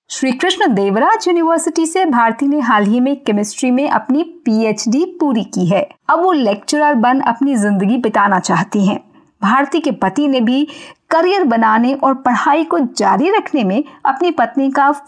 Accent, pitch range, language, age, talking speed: native, 220-315 Hz, Hindi, 50-69, 85 wpm